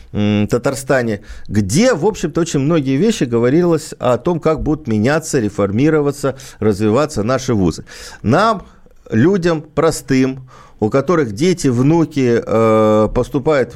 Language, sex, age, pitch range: Russian, male, 50-69, 110-160 Hz